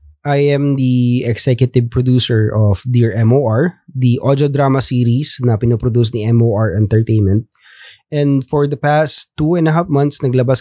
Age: 20-39